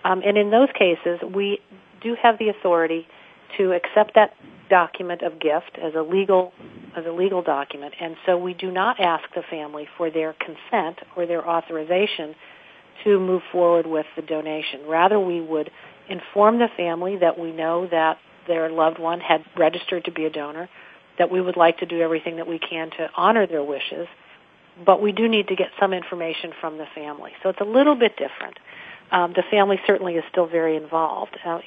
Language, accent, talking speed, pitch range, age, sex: English, American, 190 wpm, 160-195 Hz, 50-69, female